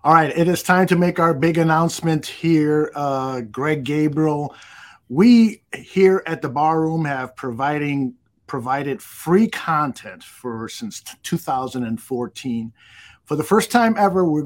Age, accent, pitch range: 50-69, American, 145-200 Hz